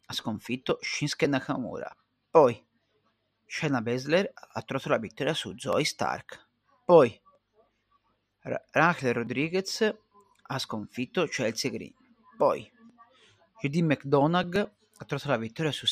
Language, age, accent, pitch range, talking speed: Italian, 40-59, native, 120-180 Hz, 110 wpm